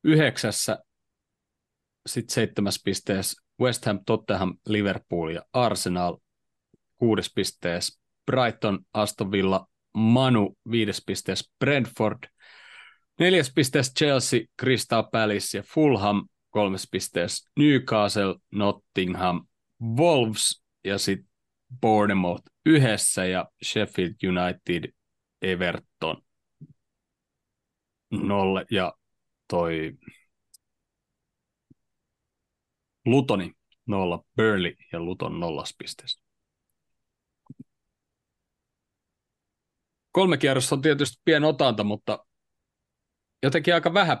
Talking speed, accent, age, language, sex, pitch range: 80 wpm, native, 30-49, Finnish, male, 95-125 Hz